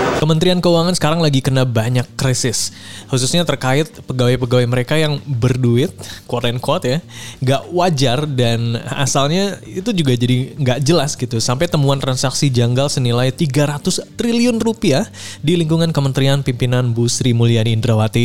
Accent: native